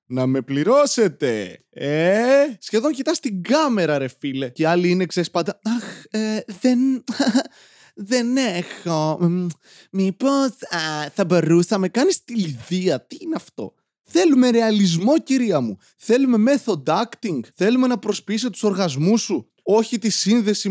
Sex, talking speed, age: male, 130 wpm, 20-39